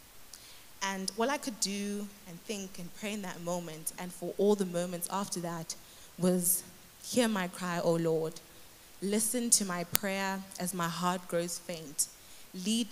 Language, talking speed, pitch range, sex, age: English, 165 wpm, 170-200 Hz, female, 20-39